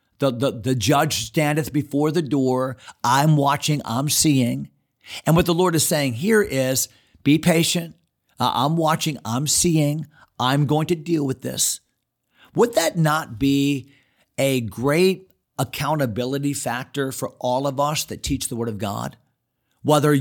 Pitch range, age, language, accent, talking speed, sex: 125-165 Hz, 50-69, English, American, 150 wpm, male